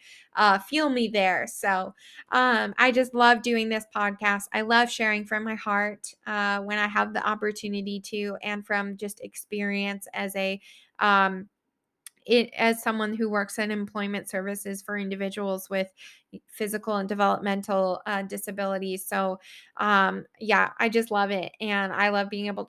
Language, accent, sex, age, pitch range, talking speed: English, American, female, 20-39, 205-240 Hz, 155 wpm